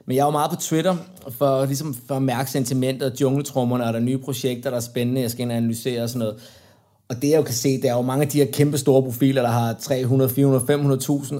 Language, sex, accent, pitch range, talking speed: Danish, male, native, 125-150 Hz, 255 wpm